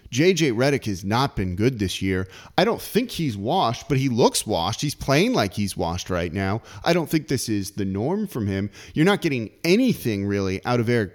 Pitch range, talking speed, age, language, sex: 110-170 Hz, 220 wpm, 30-49, English, male